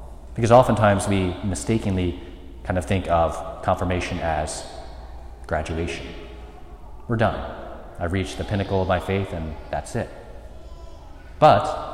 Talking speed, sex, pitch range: 120 wpm, male, 80-100 Hz